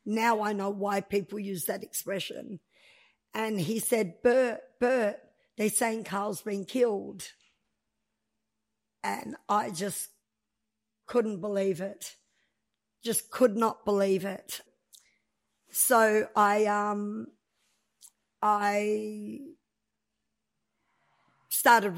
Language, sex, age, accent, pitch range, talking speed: English, female, 50-69, Australian, 200-225 Hz, 95 wpm